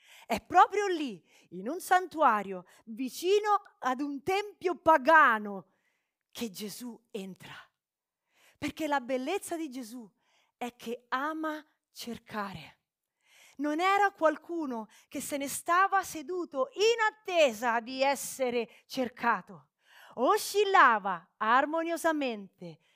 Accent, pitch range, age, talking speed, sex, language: native, 220-320 Hz, 30-49, 100 wpm, female, Italian